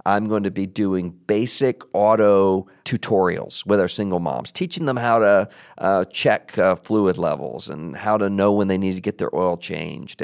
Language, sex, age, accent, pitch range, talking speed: English, male, 50-69, American, 100-125 Hz, 195 wpm